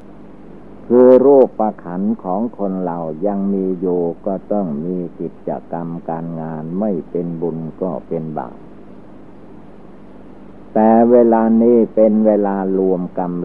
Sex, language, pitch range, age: male, Thai, 85-110 Hz, 60-79